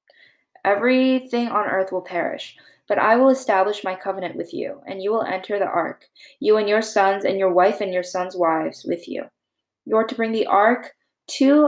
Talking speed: 200 wpm